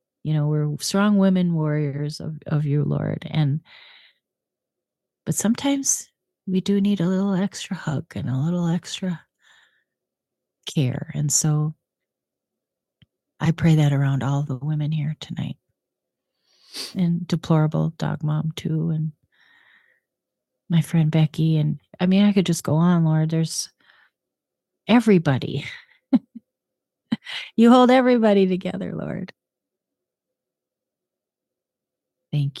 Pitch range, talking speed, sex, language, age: 155-200 Hz, 115 wpm, female, English, 30-49